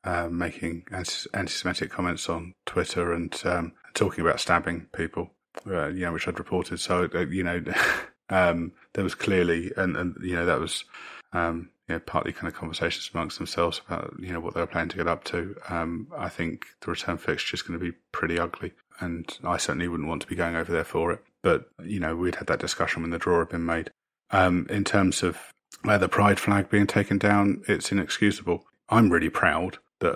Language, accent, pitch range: English, British, 85-95 Hz